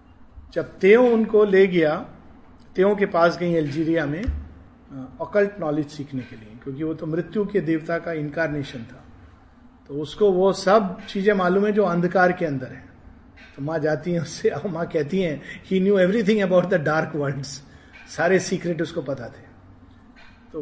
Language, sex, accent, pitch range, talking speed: Hindi, male, native, 150-200 Hz, 170 wpm